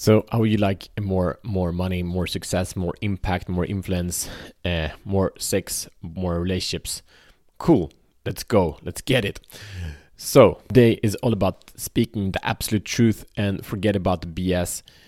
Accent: Norwegian